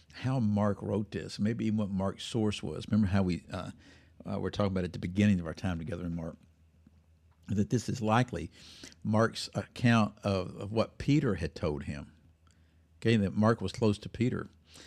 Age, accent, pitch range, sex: 60-79, American, 85-110 Hz, male